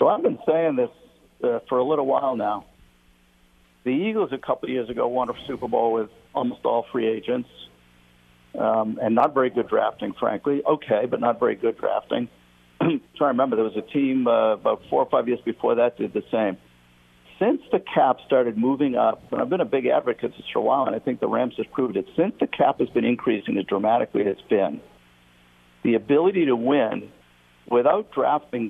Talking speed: 205 wpm